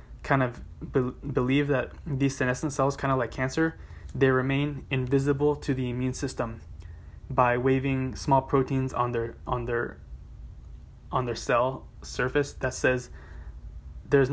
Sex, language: male, English